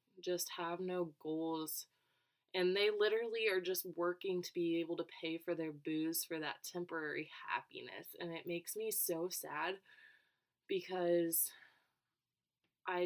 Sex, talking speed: female, 140 wpm